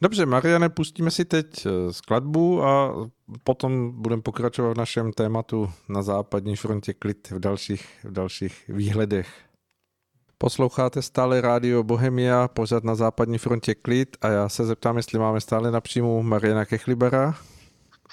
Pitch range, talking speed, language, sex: 110-130 Hz, 135 wpm, Czech, male